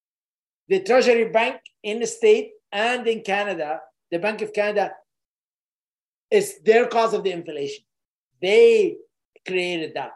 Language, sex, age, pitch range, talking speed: English, male, 50-69, 190-270 Hz, 130 wpm